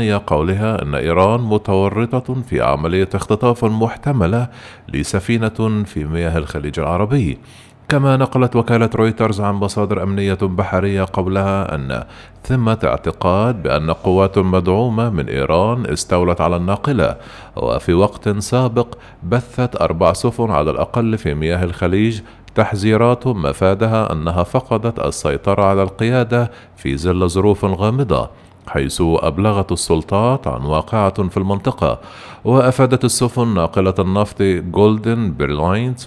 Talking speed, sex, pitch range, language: 115 wpm, male, 85-115 Hz, Arabic